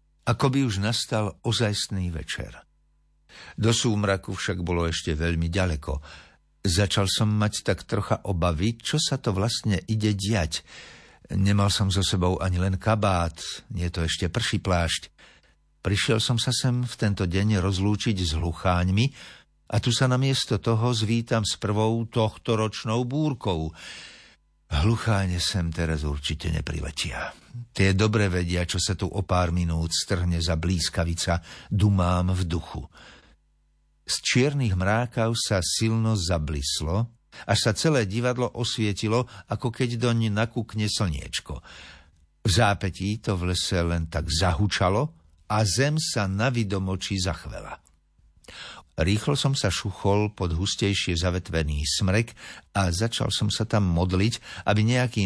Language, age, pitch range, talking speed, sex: Slovak, 60-79, 85-110 Hz, 135 wpm, male